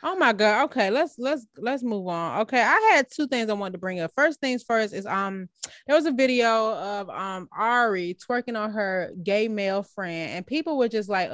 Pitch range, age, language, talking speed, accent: 195-250 Hz, 20-39, English, 220 wpm, American